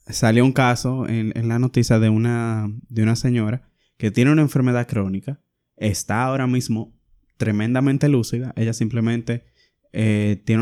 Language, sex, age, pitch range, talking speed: Spanish, male, 20-39, 110-130 Hz, 140 wpm